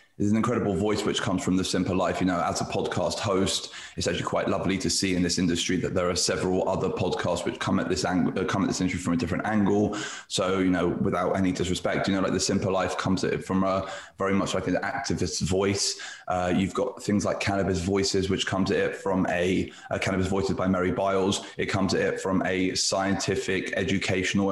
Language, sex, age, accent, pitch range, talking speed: English, male, 20-39, British, 95-105 Hz, 230 wpm